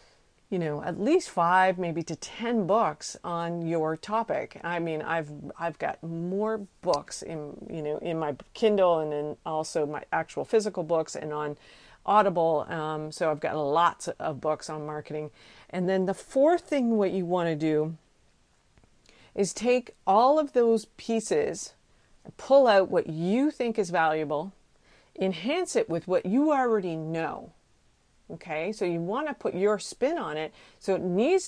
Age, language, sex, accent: 40-59, English, female, American